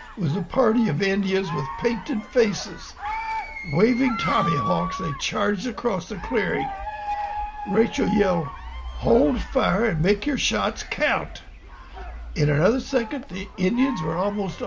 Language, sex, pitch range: English, male, 150-220 Hz